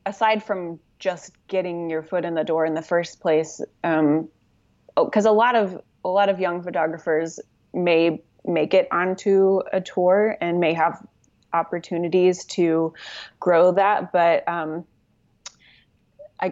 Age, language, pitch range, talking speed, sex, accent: 20-39, English, 165-185 Hz, 140 wpm, female, American